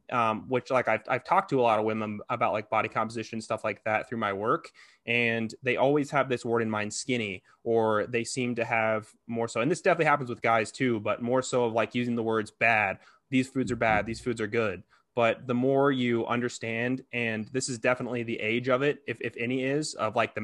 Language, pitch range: English, 110-130 Hz